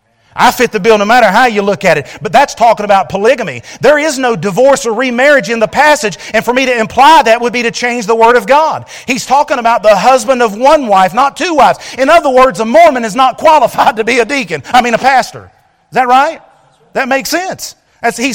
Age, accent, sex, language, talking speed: 40-59, American, male, English, 240 wpm